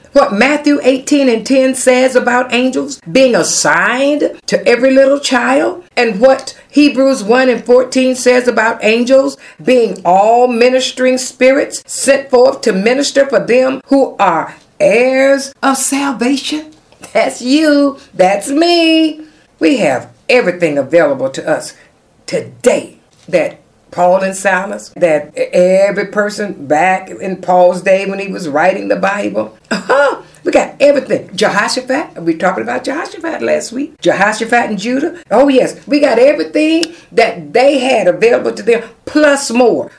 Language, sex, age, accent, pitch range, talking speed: English, female, 50-69, American, 210-280 Hz, 140 wpm